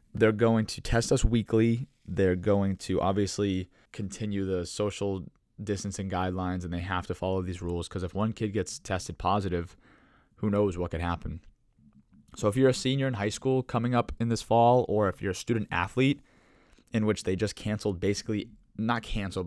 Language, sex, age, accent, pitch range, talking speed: English, male, 20-39, American, 95-125 Hz, 190 wpm